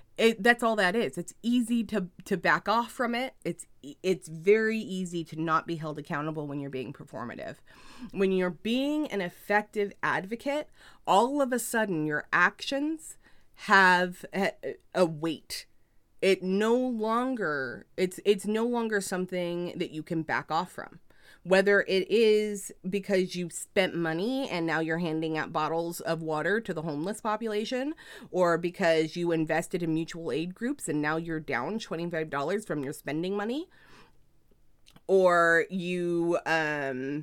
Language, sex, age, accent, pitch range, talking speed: English, female, 30-49, American, 165-220 Hz, 155 wpm